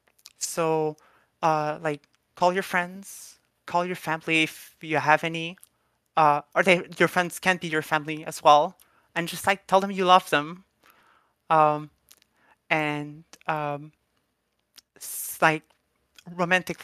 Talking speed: 130 wpm